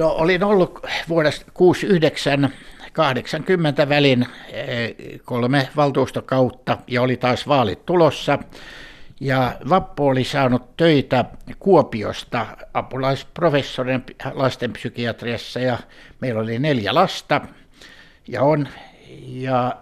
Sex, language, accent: male, Finnish, native